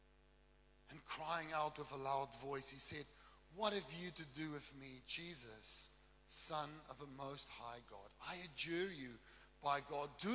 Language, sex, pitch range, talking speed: English, male, 120-150 Hz, 170 wpm